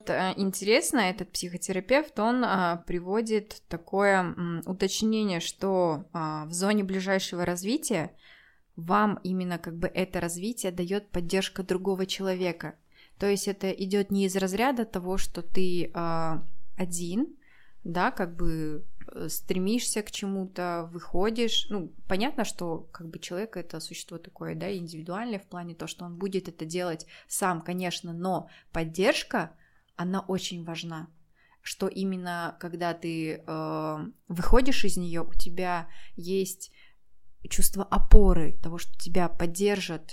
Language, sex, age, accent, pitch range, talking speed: Russian, female, 20-39, native, 170-200 Hz, 125 wpm